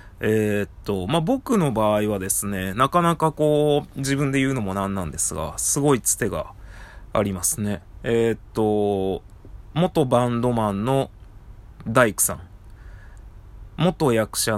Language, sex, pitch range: Japanese, male, 95-120 Hz